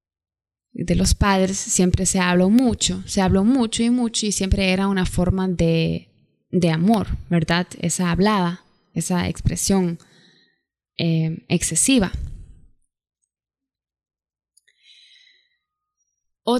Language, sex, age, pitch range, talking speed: Spanish, female, 20-39, 180-210 Hz, 100 wpm